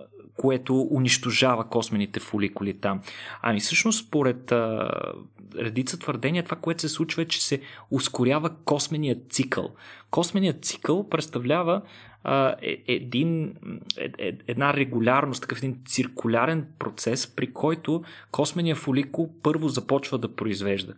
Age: 30-49